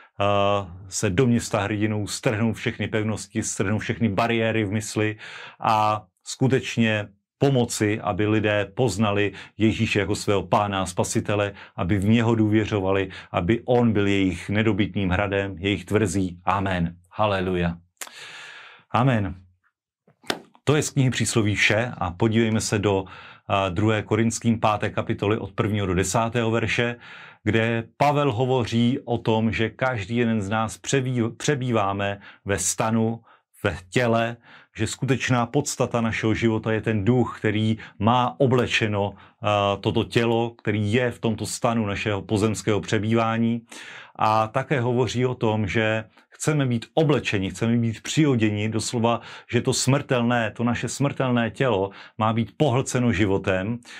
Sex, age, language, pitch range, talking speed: male, 40-59, Slovak, 105-120 Hz, 130 wpm